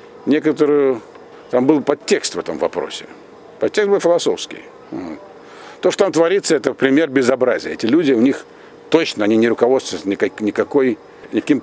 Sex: male